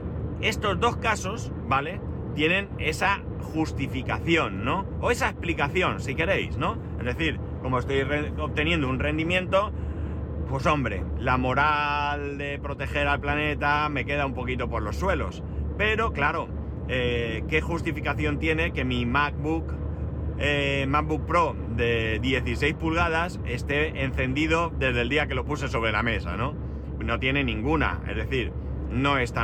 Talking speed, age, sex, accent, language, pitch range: 140 wpm, 30-49, male, Spanish, Spanish, 75-120 Hz